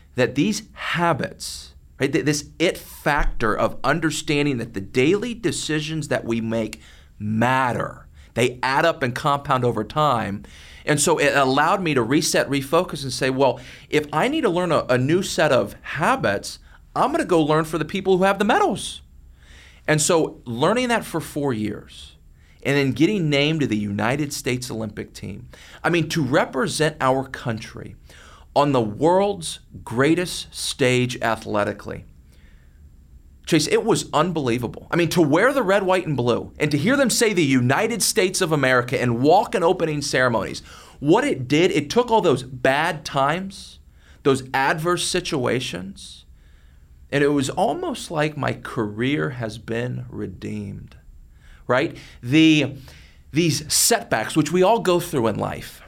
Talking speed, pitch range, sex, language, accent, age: 155 wpm, 100-155 Hz, male, English, American, 40-59